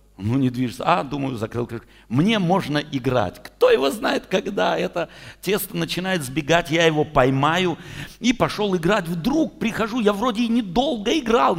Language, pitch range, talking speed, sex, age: Russian, 145-225 Hz, 160 wpm, male, 60-79